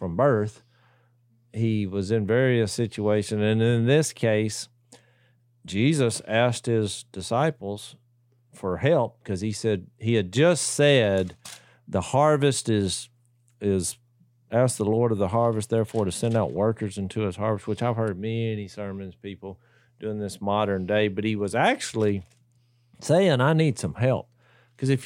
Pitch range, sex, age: 110-130 Hz, male, 50-69